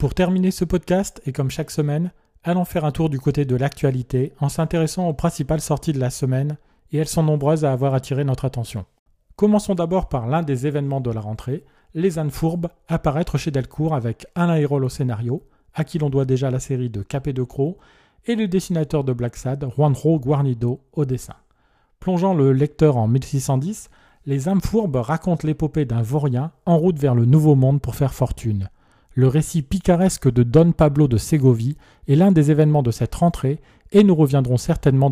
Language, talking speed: French, 195 wpm